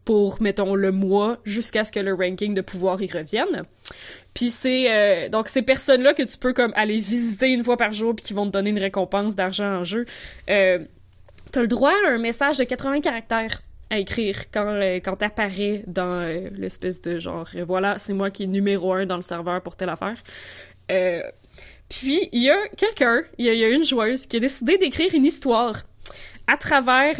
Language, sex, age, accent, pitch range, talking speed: French, female, 20-39, Canadian, 190-240 Hz, 210 wpm